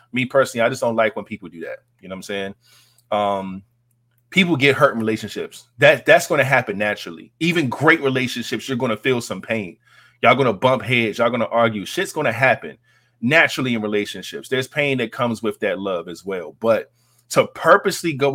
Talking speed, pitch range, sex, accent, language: 215 wpm, 105-130 Hz, male, American, English